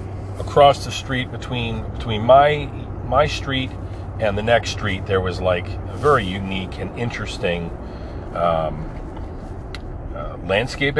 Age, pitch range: 40-59, 90-110 Hz